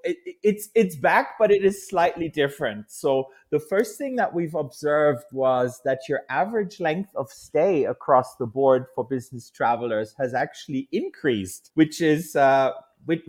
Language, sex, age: English, male, 30-49